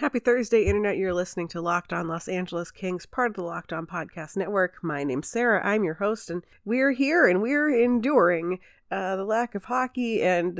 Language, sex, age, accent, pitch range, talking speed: English, female, 30-49, American, 170-235 Hz, 205 wpm